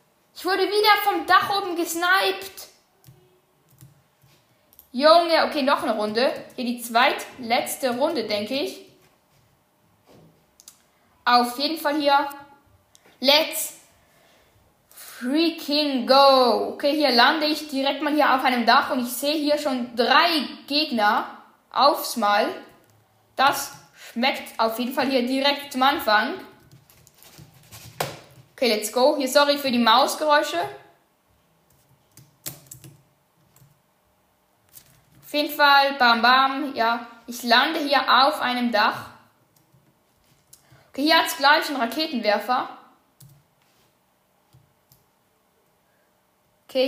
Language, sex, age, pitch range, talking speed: English, female, 10-29, 245-305 Hz, 105 wpm